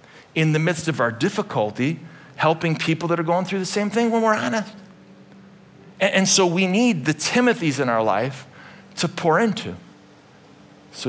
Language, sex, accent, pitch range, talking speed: English, male, American, 135-190 Hz, 175 wpm